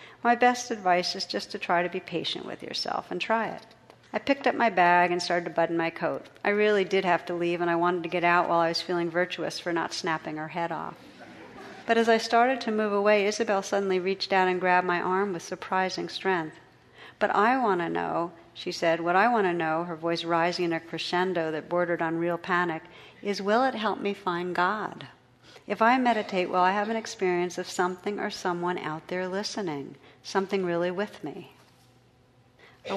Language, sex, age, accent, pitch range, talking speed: English, female, 50-69, American, 170-195 Hz, 215 wpm